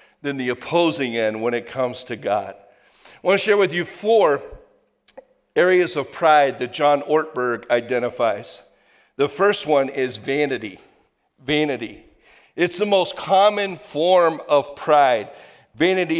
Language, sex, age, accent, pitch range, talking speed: English, male, 50-69, American, 140-175 Hz, 135 wpm